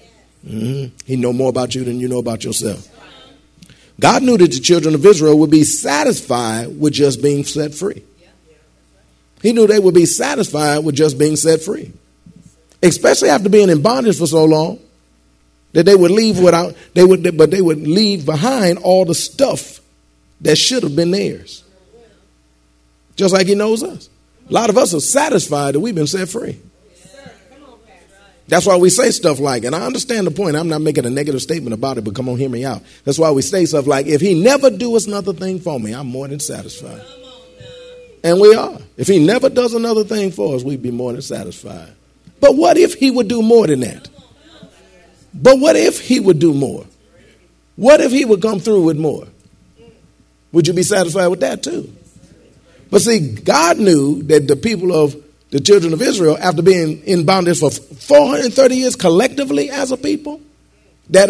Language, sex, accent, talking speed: English, male, American, 190 wpm